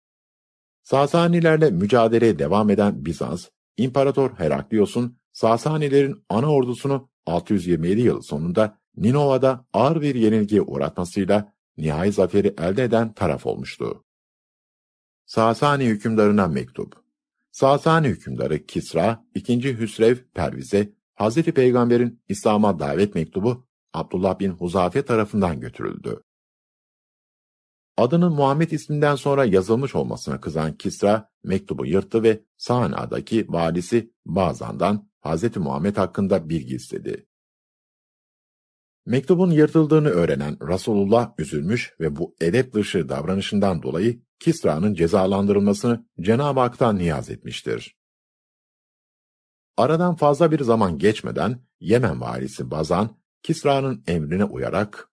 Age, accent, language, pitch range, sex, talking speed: 50-69, native, Turkish, 100-135 Hz, male, 100 wpm